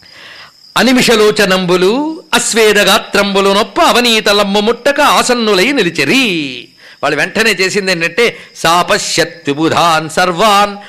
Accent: native